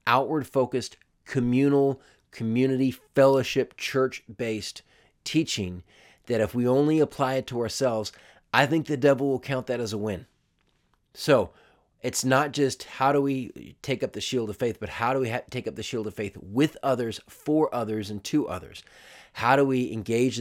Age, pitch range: 40-59, 105-135 Hz